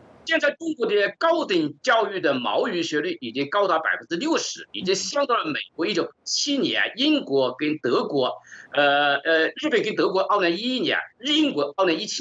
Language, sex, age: Chinese, male, 50-69